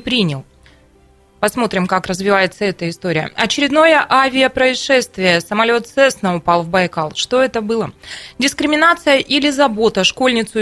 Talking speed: 115 wpm